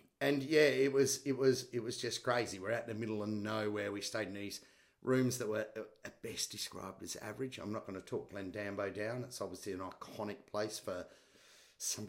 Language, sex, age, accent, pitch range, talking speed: English, male, 40-59, Australian, 105-130 Hz, 220 wpm